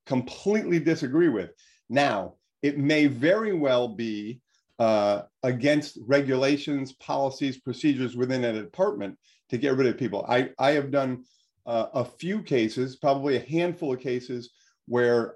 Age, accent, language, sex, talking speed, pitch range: 50-69, American, English, male, 140 wpm, 115-150 Hz